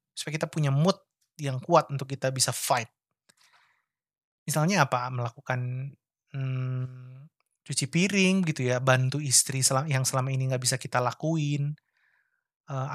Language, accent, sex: Indonesian, native, male